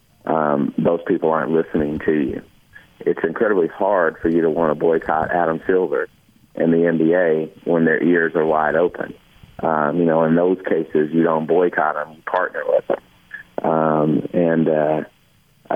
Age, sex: 30-49, male